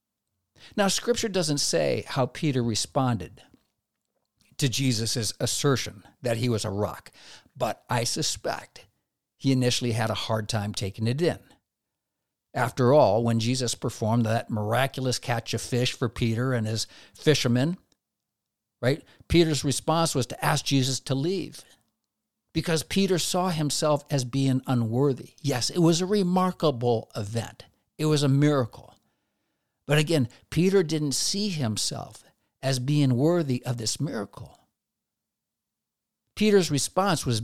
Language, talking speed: English, 135 wpm